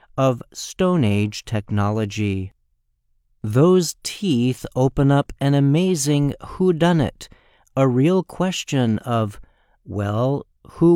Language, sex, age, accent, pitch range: Chinese, male, 50-69, American, 105-140 Hz